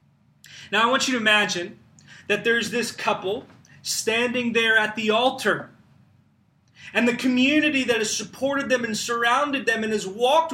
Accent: American